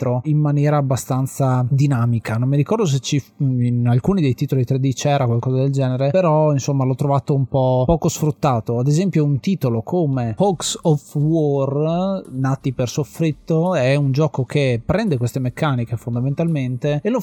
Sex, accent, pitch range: male, native, 130-165 Hz